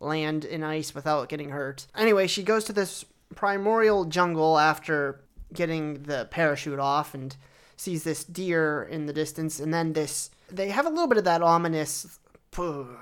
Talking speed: 170 wpm